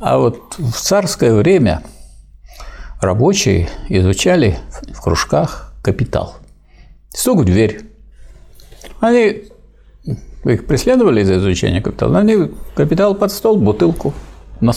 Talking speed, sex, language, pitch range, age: 105 wpm, male, Russian, 95-145 Hz, 60-79